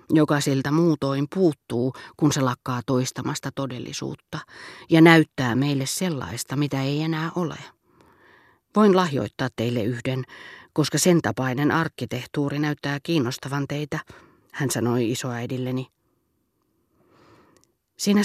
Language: Finnish